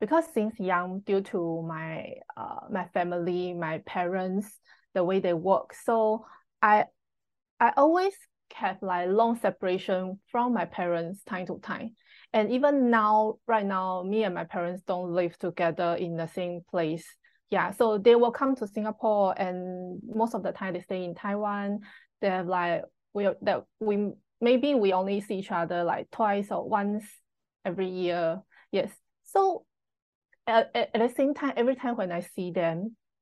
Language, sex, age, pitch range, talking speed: English, female, 20-39, 180-225 Hz, 165 wpm